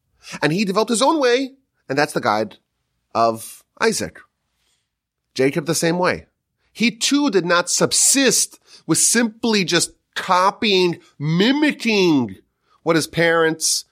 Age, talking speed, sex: 30-49, 125 wpm, male